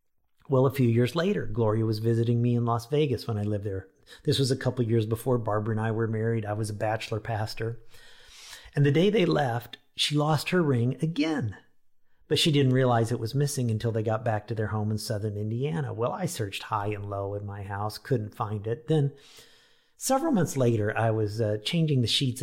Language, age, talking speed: English, 50-69, 215 wpm